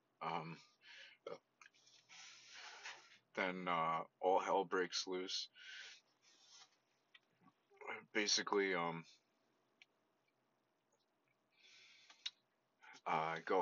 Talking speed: 50 wpm